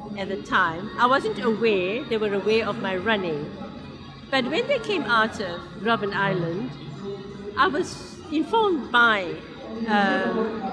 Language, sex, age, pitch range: English, female, 50-69, 215-270 Hz